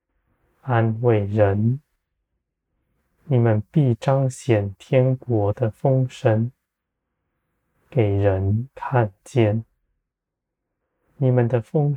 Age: 20-39